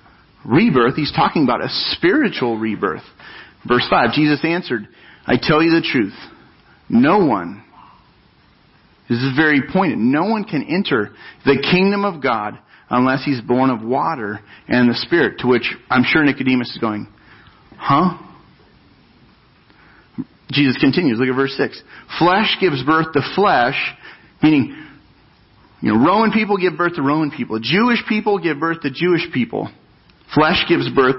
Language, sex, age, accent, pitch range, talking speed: English, male, 40-59, American, 130-180 Hz, 150 wpm